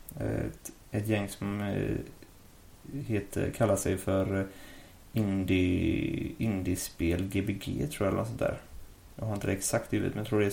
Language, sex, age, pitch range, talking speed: English, male, 30-49, 100-115 Hz, 165 wpm